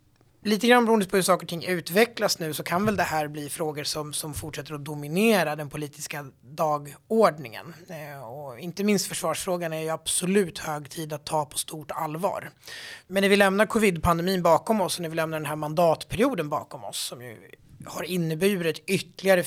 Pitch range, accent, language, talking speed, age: 150-175 Hz, native, Swedish, 185 wpm, 30-49